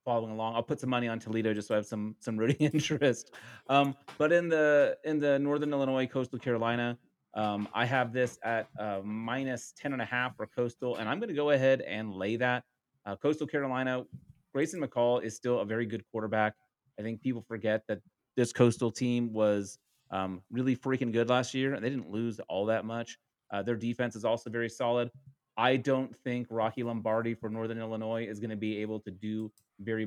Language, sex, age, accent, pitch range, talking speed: English, male, 30-49, American, 110-135 Hz, 210 wpm